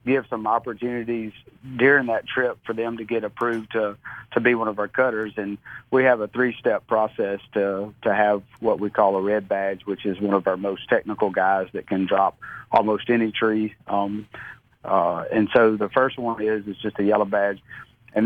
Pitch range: 100-115 Hz